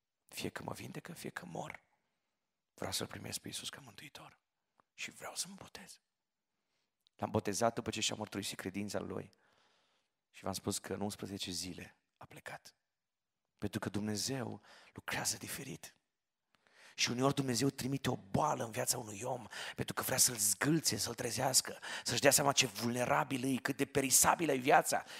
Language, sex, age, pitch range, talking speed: Romanian, male, 40-59, 100-135 Hz, 160 wpm